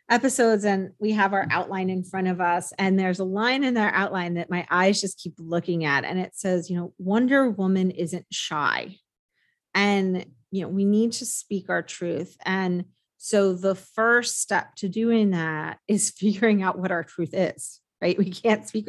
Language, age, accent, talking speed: English, 30-49, American, 195 wpm